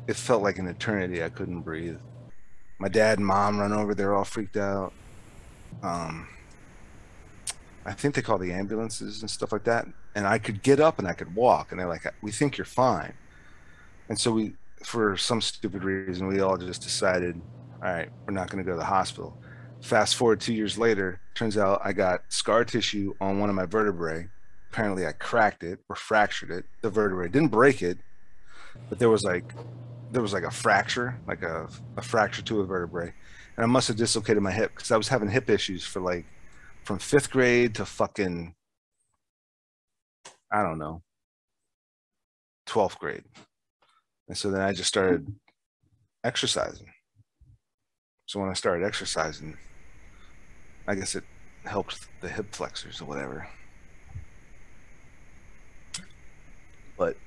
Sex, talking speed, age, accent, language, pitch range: male, 165 wpm, 30-49, American, English, 90-115 Hz